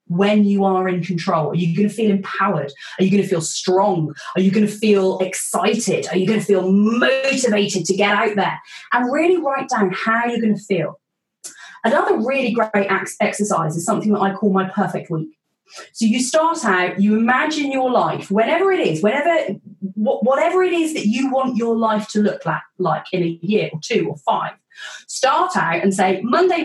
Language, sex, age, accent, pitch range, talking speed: English, female, 30-49, British, 185-230 Hz, 190 wpm